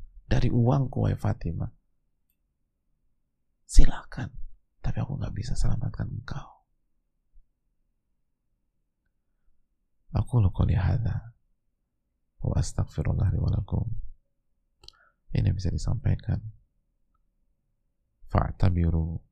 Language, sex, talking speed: Indonesian, male, 65 wpm